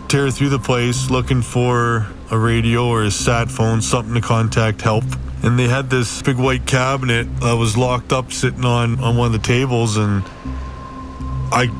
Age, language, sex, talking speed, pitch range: 20-39, English, male, 185 wpm, 110-130 Hz